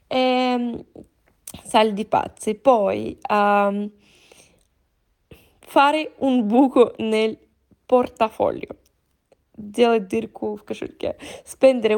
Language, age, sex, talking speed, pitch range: Italian, 20-39, female, 50 wpm, 210-255 Hz